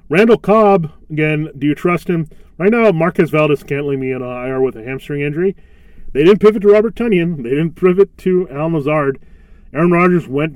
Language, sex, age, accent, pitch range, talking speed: English, male, 30-49, American, 125-155 Hz, 205 wpm